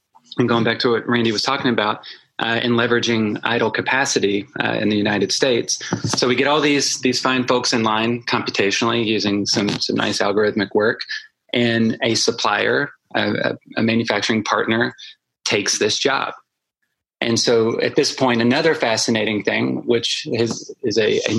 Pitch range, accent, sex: 105-120 Hz, American, male